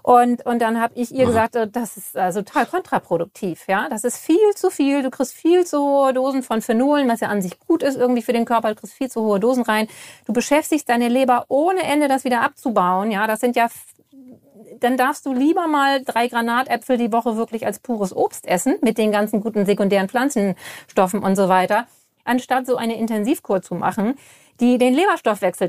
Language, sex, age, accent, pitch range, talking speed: German, female, 40-59, German, 210-270 Hz, 210 wpm